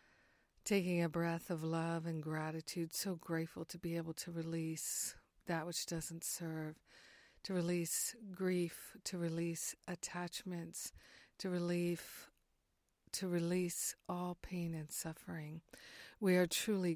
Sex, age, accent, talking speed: female, 50-69, American, 125 wpm